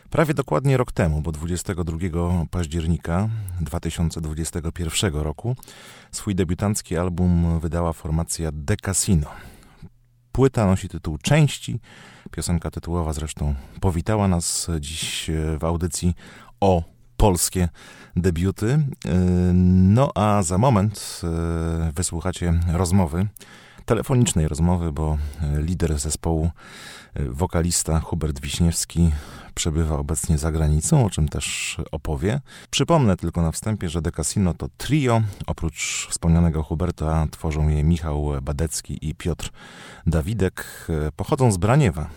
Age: 30-49